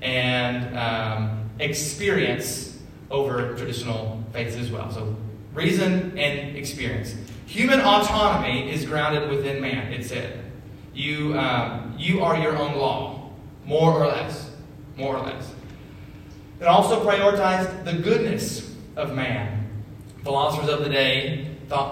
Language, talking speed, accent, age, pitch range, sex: English, 120 wpm, American, 30-49, 125-160 Hz, male